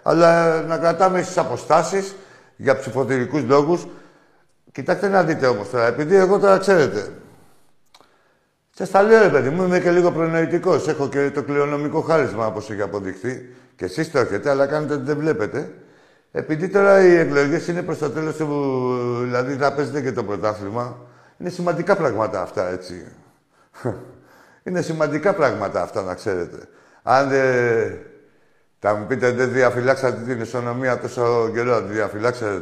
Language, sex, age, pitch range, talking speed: Greek, male, 50-69, 130-170 Hz, 145 wpm